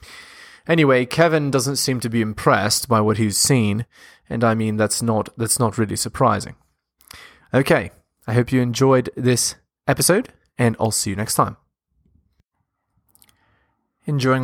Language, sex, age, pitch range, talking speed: English, male, 20-39, 120-160 Hz, 140 wpm